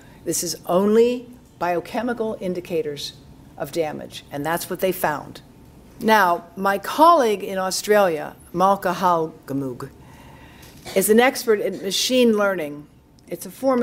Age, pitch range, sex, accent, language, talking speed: 60-79, 155-205 Hz, female, American, English, 120 wpm